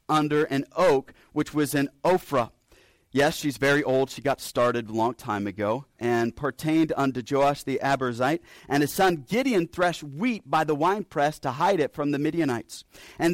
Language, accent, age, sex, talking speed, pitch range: English, American, 40-59, male, 180 wpm, 140-185 Hz